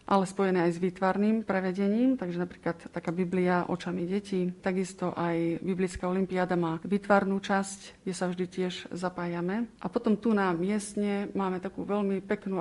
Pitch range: 180-200 Hz